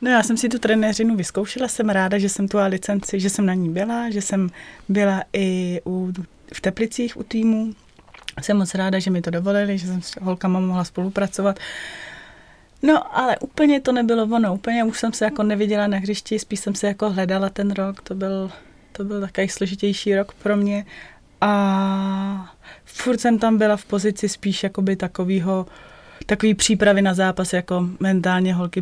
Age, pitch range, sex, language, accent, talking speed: 20-39, 180-205 Hz, female, Czech, native, 175 wpm